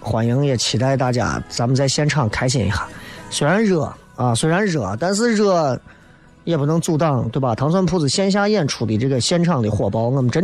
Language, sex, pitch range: Chinese, male, 135-195 Hz